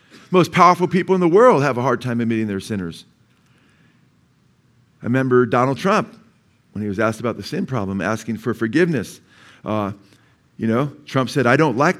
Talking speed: 180 wpm